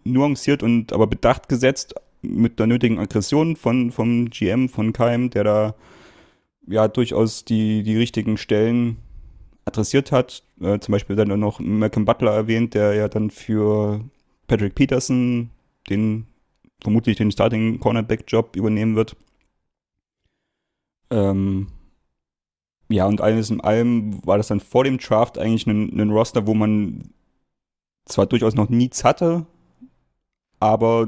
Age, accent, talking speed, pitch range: 30-49, German, 130 wpm, 105-115 Hz